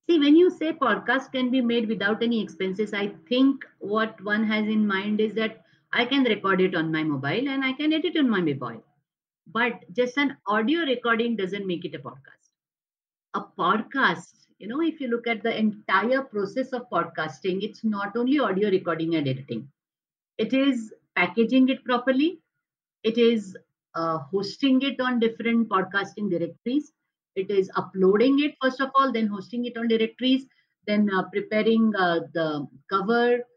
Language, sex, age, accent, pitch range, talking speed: Marathi, female, 50-69, native, 185-255 Hz, 175 wpm